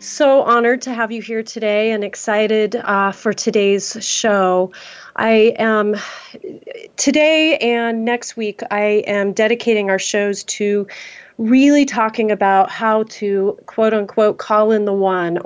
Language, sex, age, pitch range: English, female, 30-49, 195-225 Hz